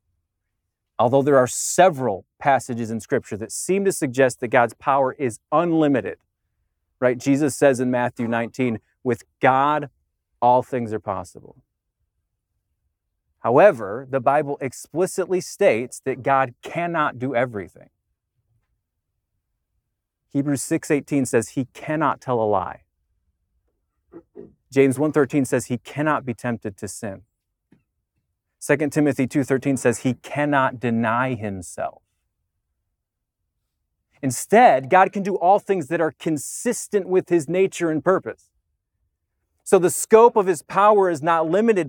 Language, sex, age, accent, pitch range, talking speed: English, male, 30-49, American, 110-170 Hz, 125 wpm